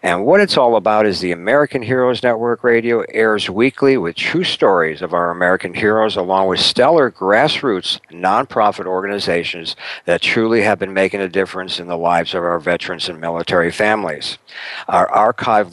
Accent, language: American, English